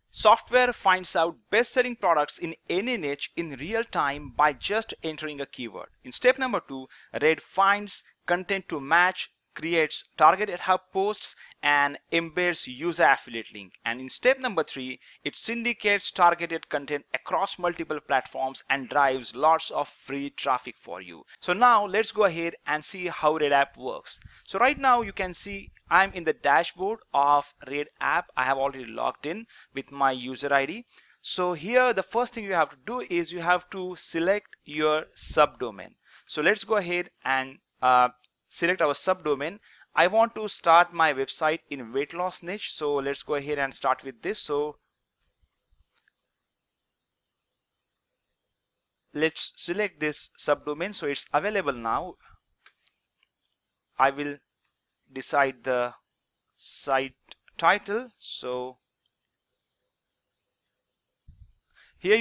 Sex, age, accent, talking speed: male, 30-49, Indian, 140 wpm